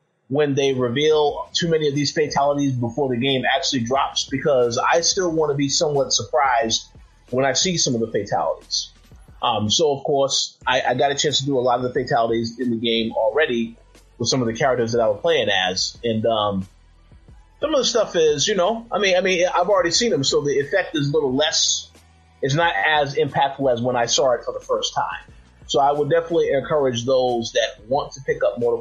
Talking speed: 220 wpm